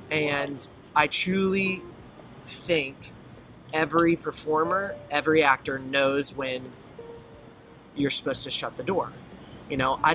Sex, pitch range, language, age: male, 135-180 Hz, English, 30-49